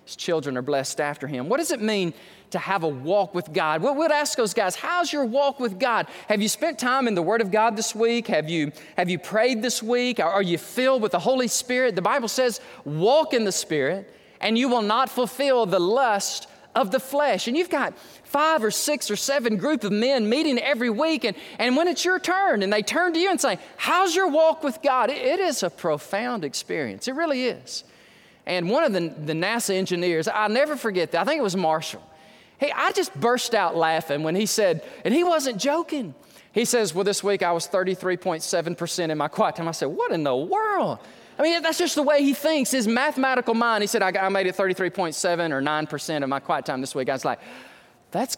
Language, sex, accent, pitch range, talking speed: English, male, American, 180-275 Hz, 230 wpm